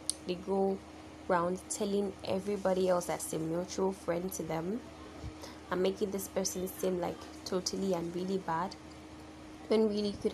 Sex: female